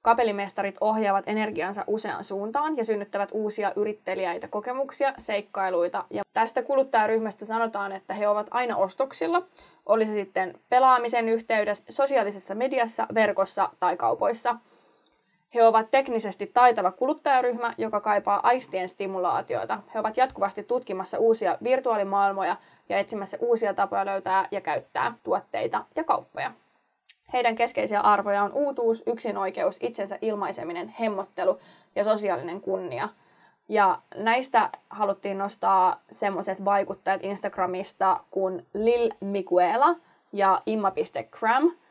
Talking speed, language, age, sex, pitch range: 110 wpm, Finnish, 20-39, female, 195-235 Hz